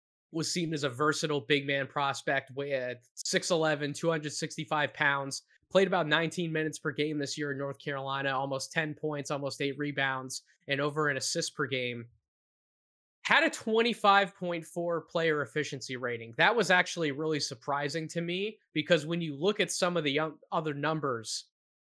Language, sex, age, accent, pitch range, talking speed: English, male, 20-39, American, 135-160 Hz, 160 wpm